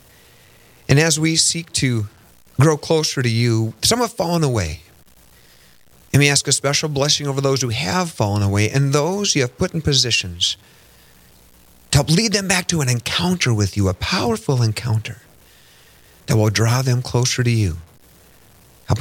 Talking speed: 165 wpm